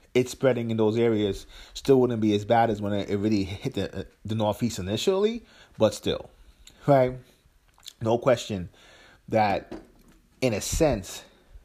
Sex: male